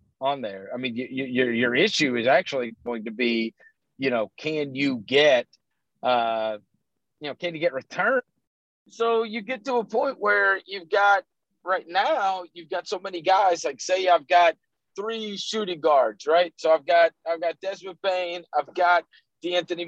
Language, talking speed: English, 180 wpm